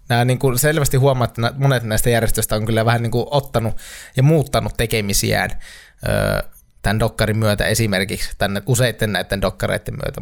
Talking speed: 155 wpm